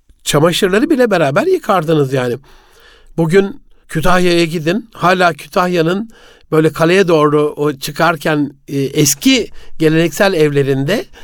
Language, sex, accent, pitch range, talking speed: Turkish, male, native, 155-220 Hz, 95 wpm